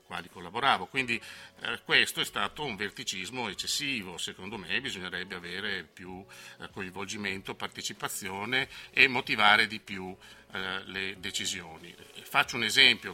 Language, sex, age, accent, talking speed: Italian, male, 50-69, native, 125 wpm